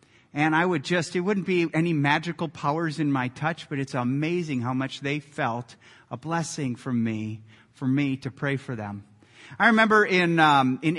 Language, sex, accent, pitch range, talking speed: English, male, American, 135-185 Hz, 190 wpm